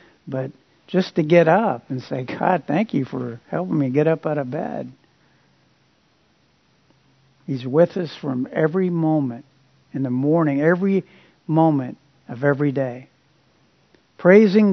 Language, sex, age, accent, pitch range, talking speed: English, male, 60-79, American, 140-175 Hz, 135 wpm